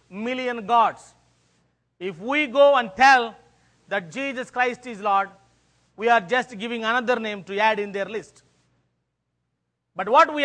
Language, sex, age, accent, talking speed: English, male, 40-59, Indian, 150 wpm